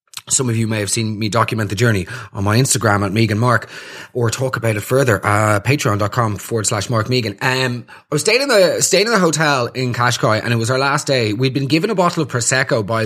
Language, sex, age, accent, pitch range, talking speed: English, male, 20-39, Irish, 115-145 Hz, 245 wpm